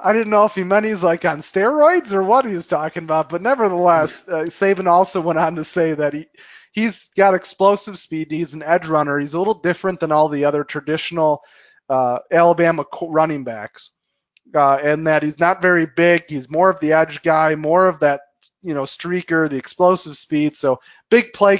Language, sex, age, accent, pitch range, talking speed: English, male, 30-49, American, 160-205 Hz, 200 wpm